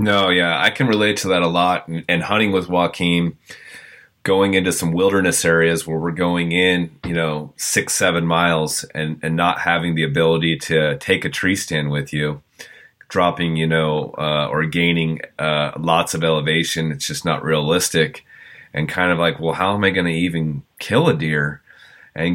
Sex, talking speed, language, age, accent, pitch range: male, 185 wpm, English, 30-49, American, 80-90 Hz